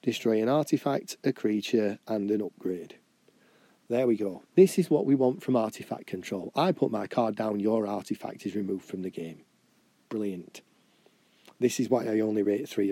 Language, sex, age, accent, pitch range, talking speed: English, male, 40-59, British, 100-125 Hz, 180 wpm